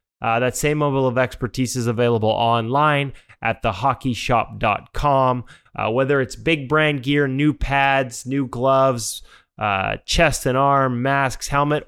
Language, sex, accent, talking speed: English, male, American, 135 wpm